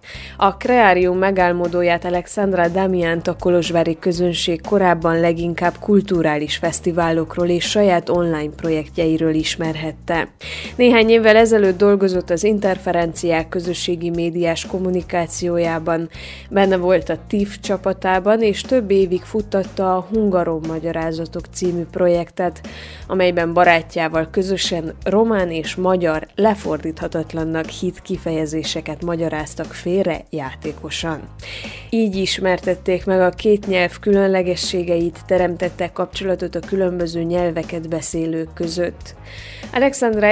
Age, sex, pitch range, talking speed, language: 20-39, female, 165-190 Hz, 100 wpm, Hungarian